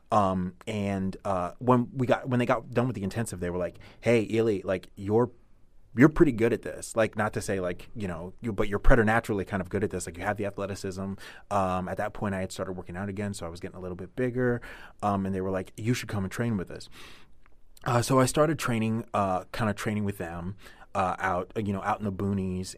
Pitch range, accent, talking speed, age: 95-110 Hz, American, 250 wpm, 30-49